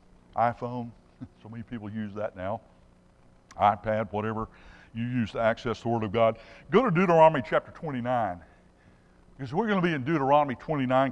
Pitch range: 100-160 Hz